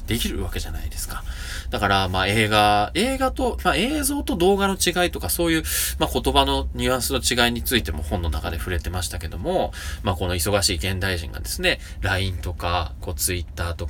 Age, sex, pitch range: 20-39, male, 80-125 Hz